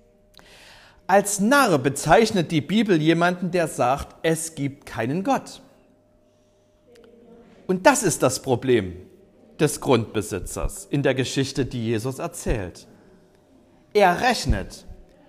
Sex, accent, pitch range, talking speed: male, German, 120-180 Hz, 105 wpm